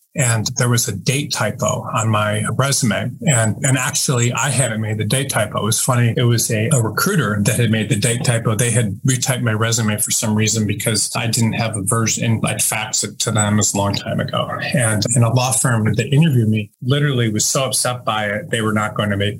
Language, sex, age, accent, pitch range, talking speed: English, male, 30-49, American, 110-130 Hz, 230 wpm